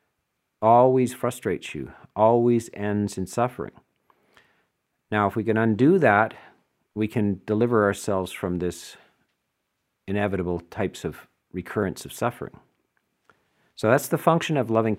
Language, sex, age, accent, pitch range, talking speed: English, male, 50-69, American, 95-130 Hz, 125 wpm